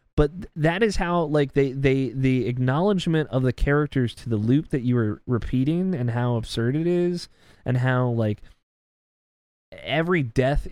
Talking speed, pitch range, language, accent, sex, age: 160 wpm, 110-140 Hz, English, American, male, 20-39